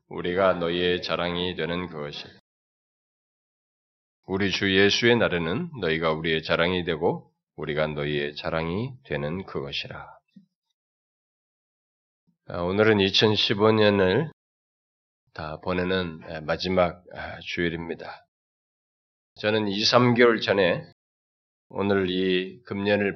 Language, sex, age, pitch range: Korean, male, 20-39, 80-105 Hz